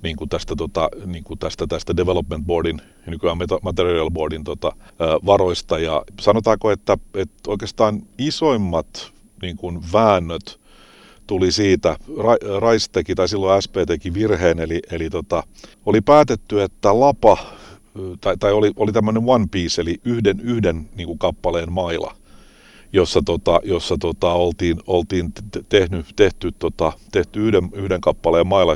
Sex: male